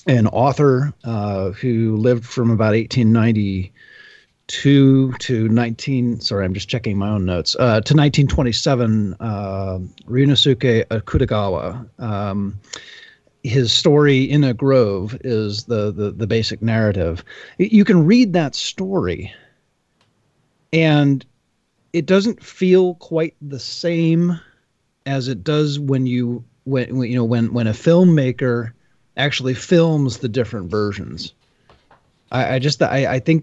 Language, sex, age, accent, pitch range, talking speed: English, male, 40-59, American, 110-145 Hz, 125 wpm